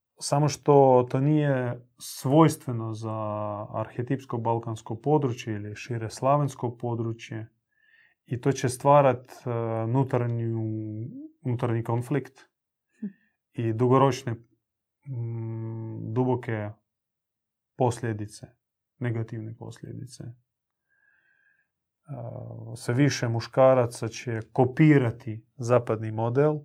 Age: 30-49